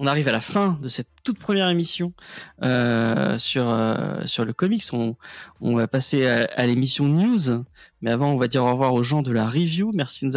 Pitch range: 125-190 Hz